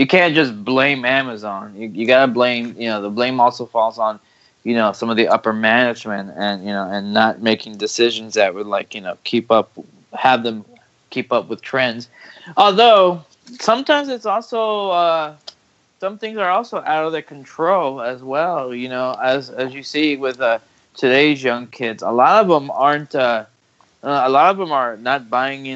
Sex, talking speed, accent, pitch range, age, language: male, 195 wpm, American, 110-145 Hz, 20-39, English